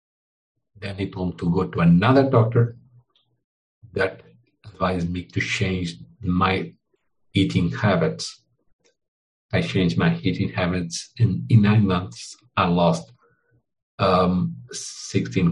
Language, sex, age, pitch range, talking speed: English, male, 50-69, 90-120 Hz, 110 wpm